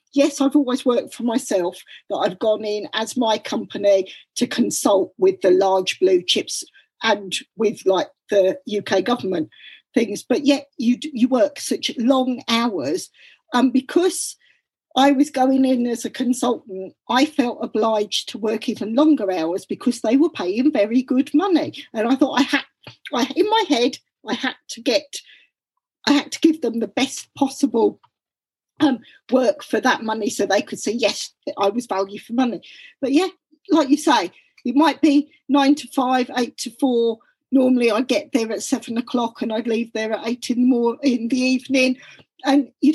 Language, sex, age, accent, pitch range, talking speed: English, female, 50-69, British, 230-290 Hz, 185 wpm